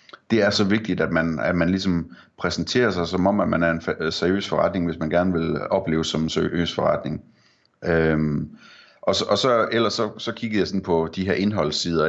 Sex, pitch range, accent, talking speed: male, 80-95 Hz, native, 220 wpm